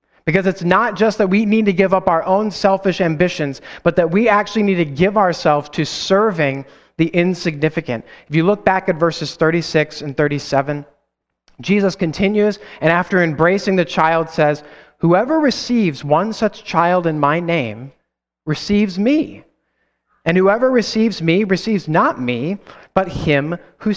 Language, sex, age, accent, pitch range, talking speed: English, male, 30-49, American, 155-205 Hz, 160 wpm